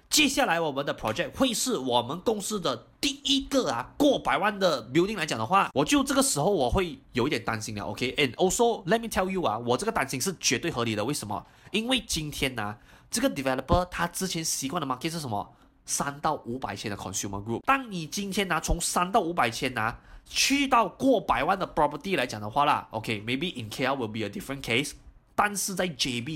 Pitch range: 120-195 Hz